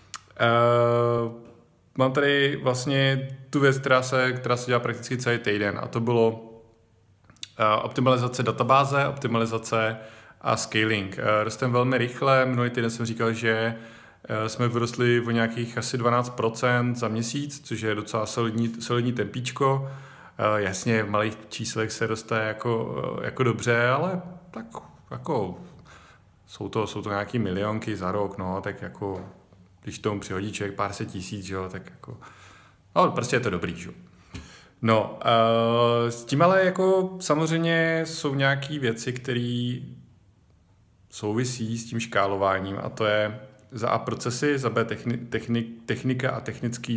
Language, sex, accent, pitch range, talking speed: Czech, male, native, 105-125 Hz, 145 wpm